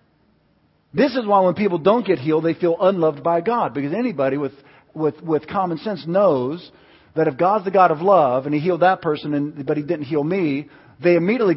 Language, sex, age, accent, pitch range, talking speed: English, male, 50-69, American, 140-185 Hz, 215 wpm